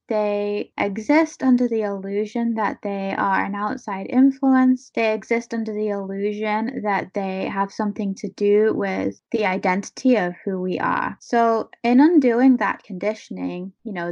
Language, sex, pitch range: English, female, 195-245 Hz